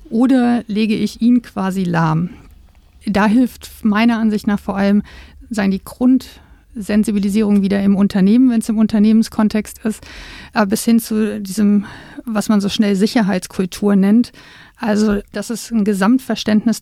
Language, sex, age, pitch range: German, female, 50-69, 200-225 Hz